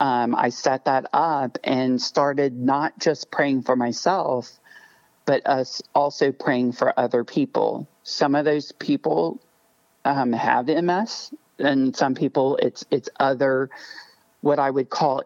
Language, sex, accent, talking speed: English, male, American, 140 wpm